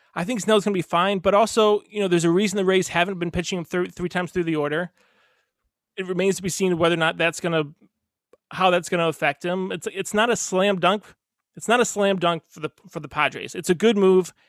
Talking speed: 260 wpm